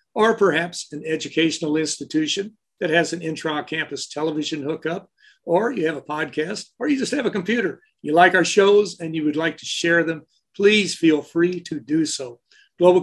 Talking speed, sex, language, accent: 185 wpm, male, English, American